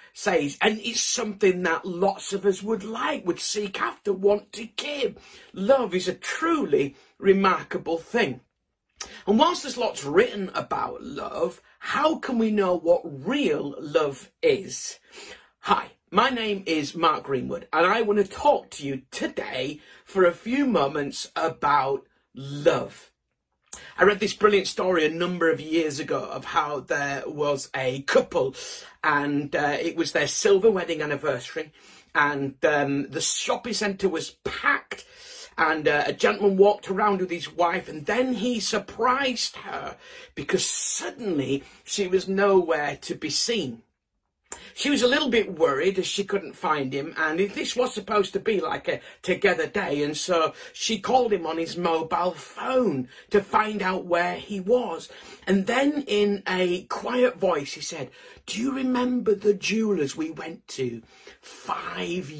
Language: English